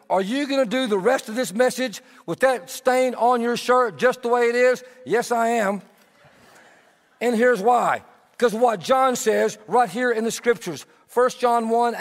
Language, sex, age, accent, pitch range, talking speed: English, male, 50-69, American, 215-255 Hz, 195 wpm